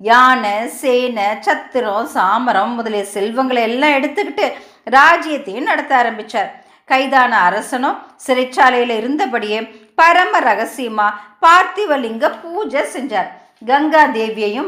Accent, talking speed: native, 90 wpm